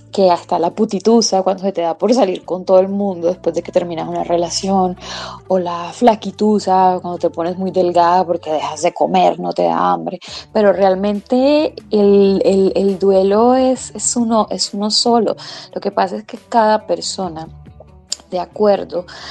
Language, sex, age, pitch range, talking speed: Spanish, female, 20-39, 175-210 Hz, 175 wpm